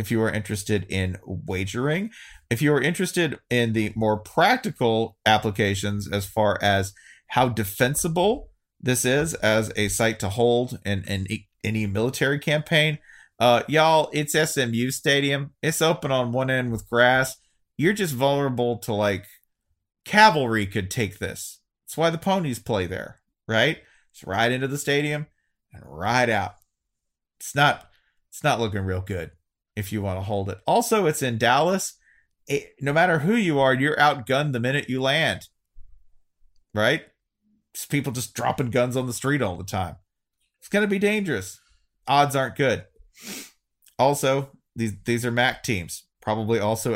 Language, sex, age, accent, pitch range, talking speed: English, male, 30-49, American, 100-140 Hz, 160 wpm